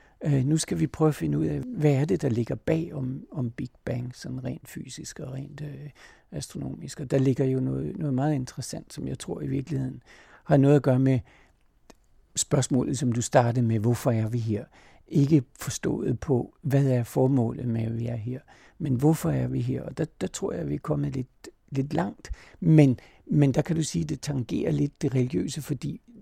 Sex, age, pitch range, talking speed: male, 60-79, 130-155 Hz, 210 wpm